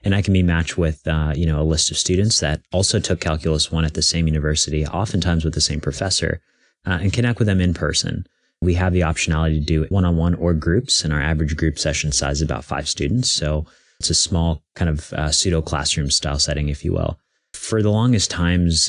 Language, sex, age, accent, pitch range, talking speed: English, male, 30-49, American, 80-90 Hz, 230 wpm